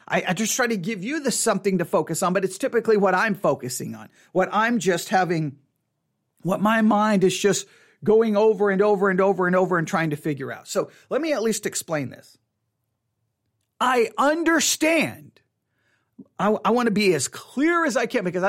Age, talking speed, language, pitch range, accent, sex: 40-59, 195 wpm, English, 170-230 Hz, American, male